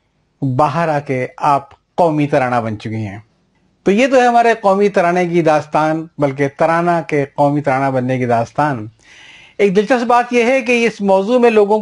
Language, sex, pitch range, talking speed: Urdu, male, 140-190 Hz, 185 wpm